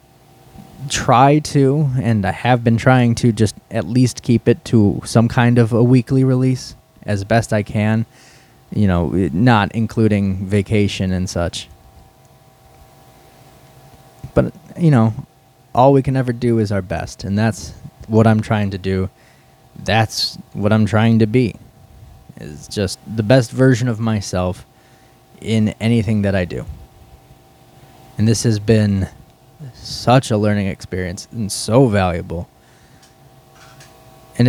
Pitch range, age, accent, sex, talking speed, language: 105-130 Hz, 20-39, American, male, 135 wpm, English